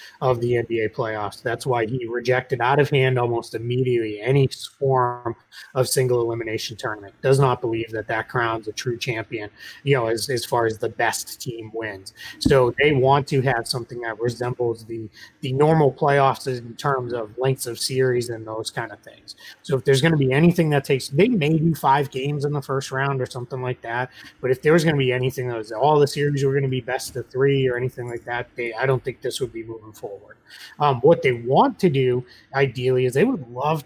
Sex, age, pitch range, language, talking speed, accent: male, 30-49, 120-135 Hz, English, 225 wpm, American